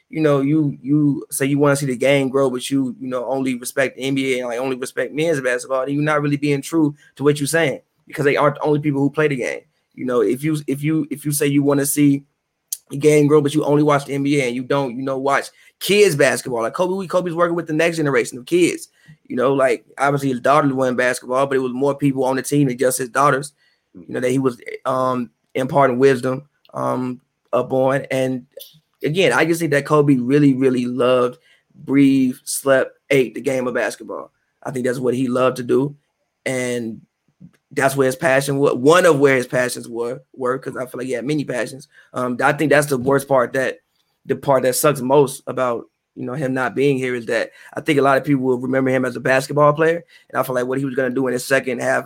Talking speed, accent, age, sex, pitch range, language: 245 wpm, American, 20-39, male, 130-145 Hz, English